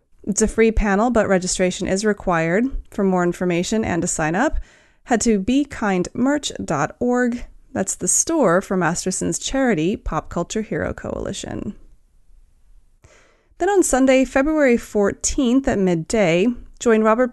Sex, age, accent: female, 30-49, American